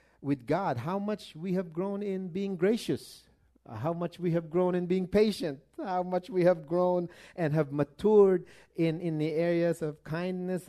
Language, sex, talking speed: English, male, 185 wpm